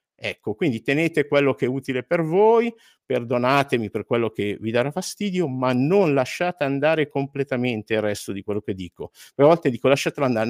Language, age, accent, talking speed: Italian, 50-69, native, 185 wpm